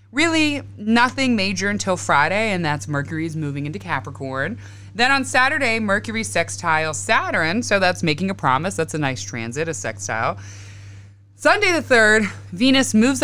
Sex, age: female, 20-39